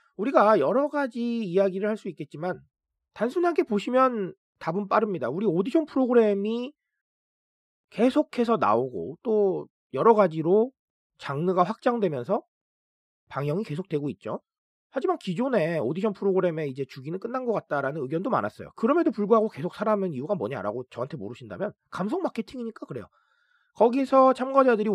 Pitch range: 160-240 Hz